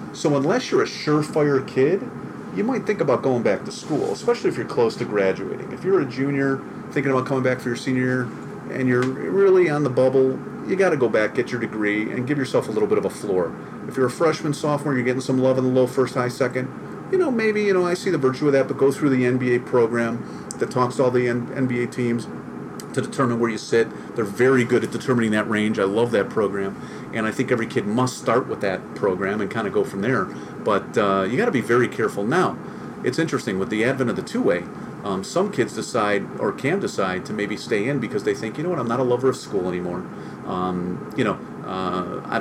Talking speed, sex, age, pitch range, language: 245 wpm, male, 40-59, 110-135 Hz, English